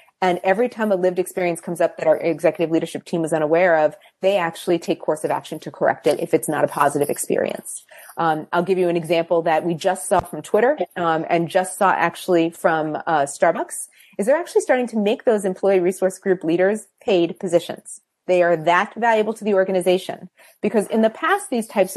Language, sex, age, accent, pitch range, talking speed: English, female, 30-49, American, 170-195 Hz, 210 wpm